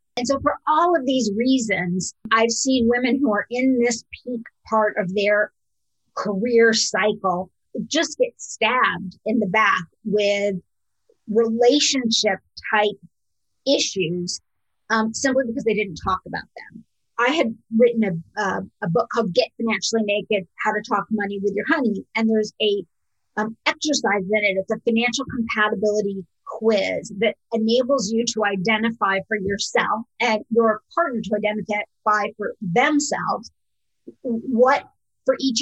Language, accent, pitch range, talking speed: English, American, 205-240 Hz, 140 wpm